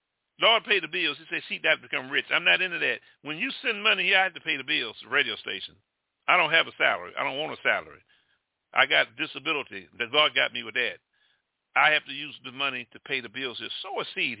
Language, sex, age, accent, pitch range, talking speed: English, male, 50-69, American, 165-205 Hz, 265 wpm